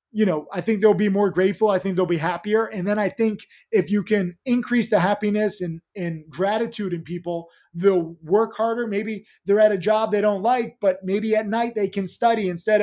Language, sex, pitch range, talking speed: English, male, 180-215 Hz, 220 wpm